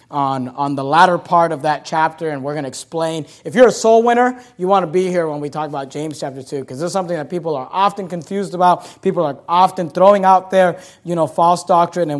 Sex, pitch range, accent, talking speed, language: male, 170-230 Hz, American, 240 wpm, English